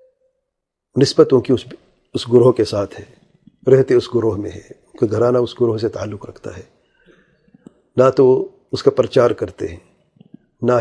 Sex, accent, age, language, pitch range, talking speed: male, Indian, 40-59, English, 115-130 Hz, 135 wpm